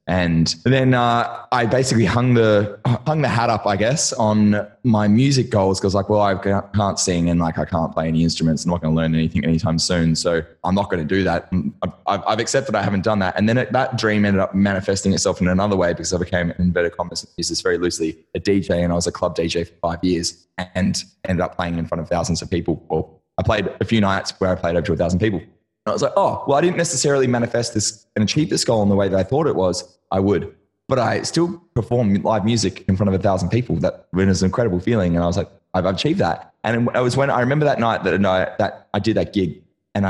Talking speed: 255 wpm